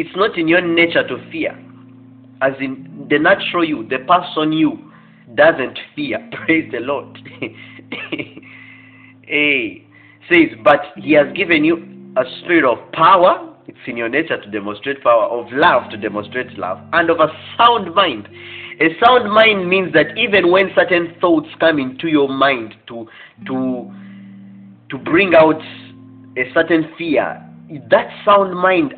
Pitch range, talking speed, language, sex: 110-165 Hz, 150 wpm, English, male